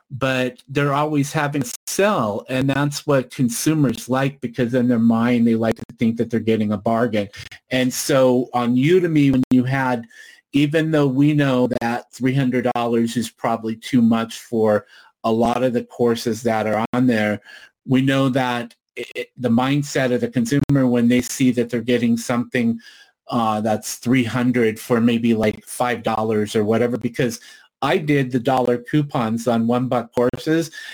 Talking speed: 170 wpm